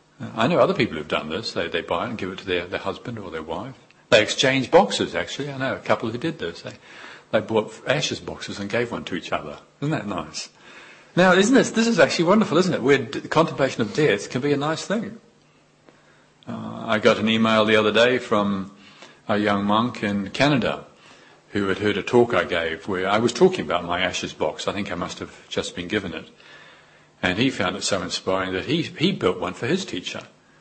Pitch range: 95-135 Hz